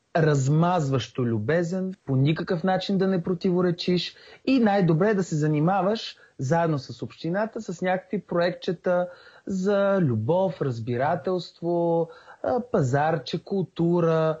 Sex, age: male, 30-49